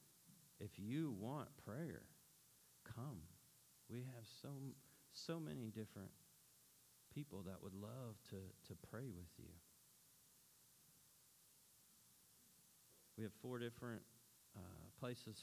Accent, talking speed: American, 100 wpm